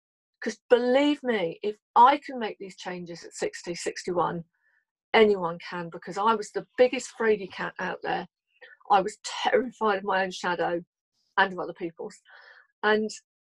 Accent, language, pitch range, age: British, English, 185-230 Hz, 40-59